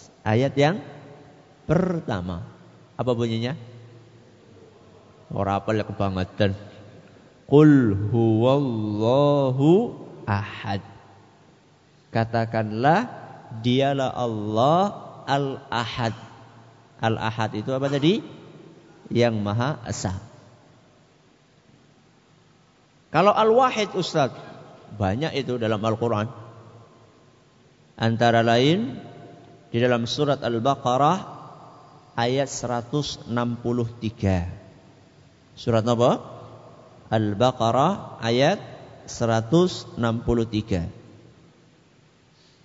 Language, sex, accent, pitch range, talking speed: English, male, Indonesian, 115-150 Hz, 60 wpm